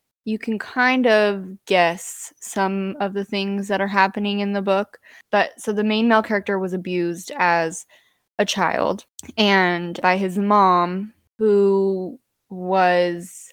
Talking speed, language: 140 wpm, English